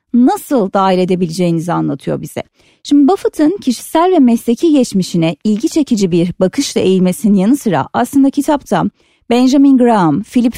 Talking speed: 130 wpm